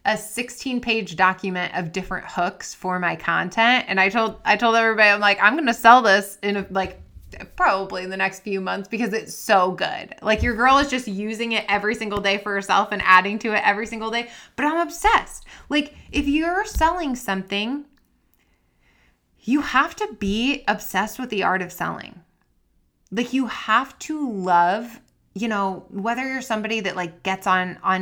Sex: female